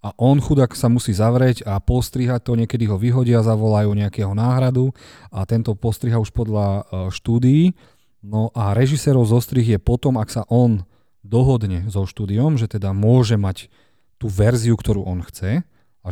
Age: 40-59